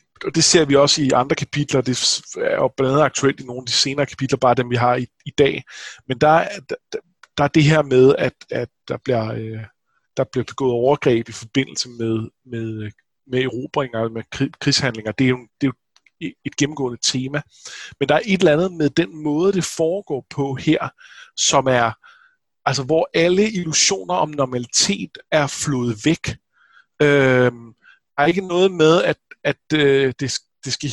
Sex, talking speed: male, 190 wpm